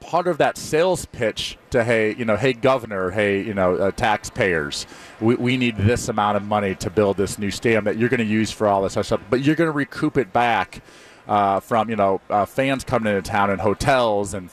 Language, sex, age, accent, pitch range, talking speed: English, male, 40-59, American, 100-125 Hz, 235 wpm